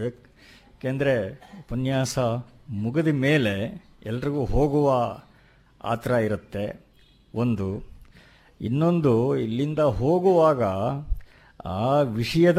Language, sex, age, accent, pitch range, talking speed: Kannada, male, 50-69, native, 115-130 Hz, 65 wpm